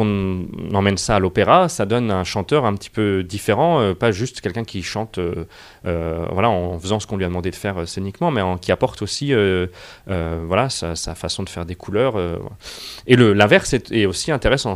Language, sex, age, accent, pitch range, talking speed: French, male, 30-49, French, 95-125 Hz, 230 wpm